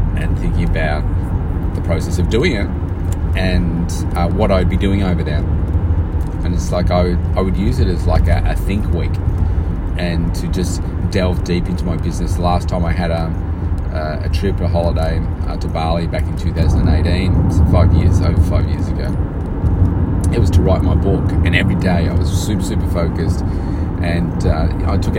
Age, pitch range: 30-49, 80-90 Hz